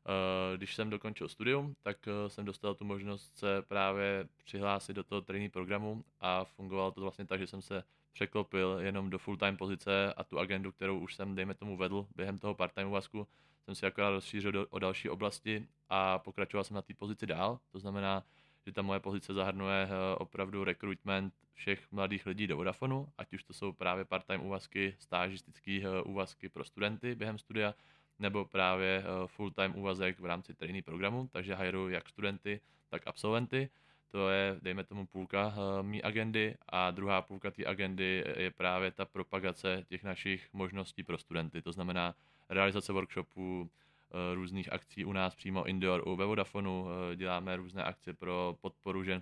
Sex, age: male, 20-39